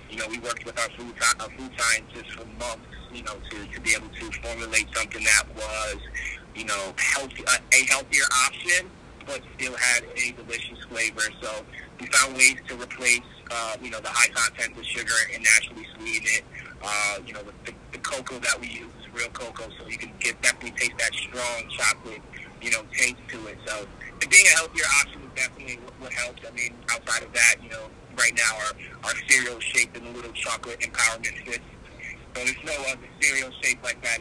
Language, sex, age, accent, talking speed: English, male, 30-49, American, 205 wpm